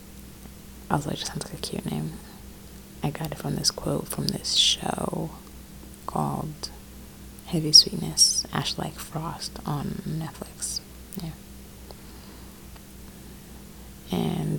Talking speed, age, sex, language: 115 wpm, 20-39, female, English